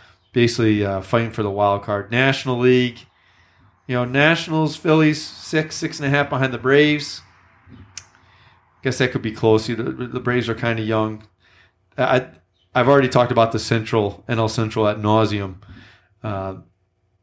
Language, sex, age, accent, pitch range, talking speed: English, male, 30-49, American, 95-130 Hz, 160 wpm